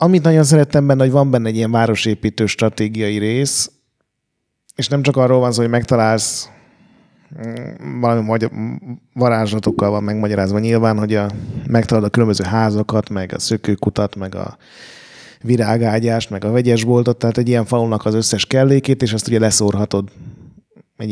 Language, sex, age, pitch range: Hungarian, male, 30-49, 110-130 Hz